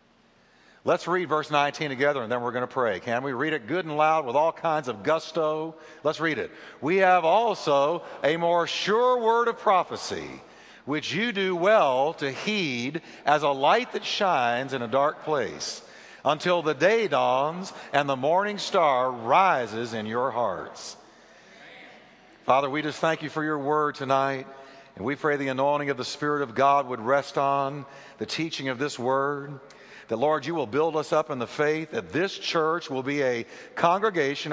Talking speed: 185 wpm